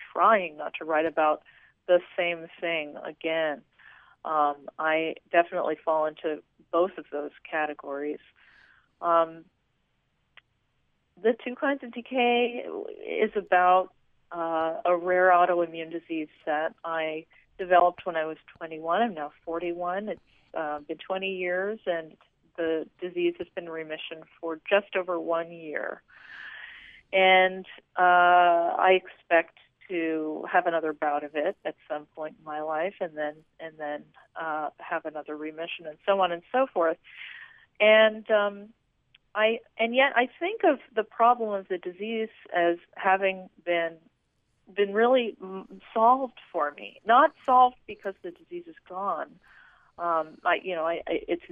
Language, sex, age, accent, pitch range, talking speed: English, female, 40-59, American, 160-210 Hz, 140 wpm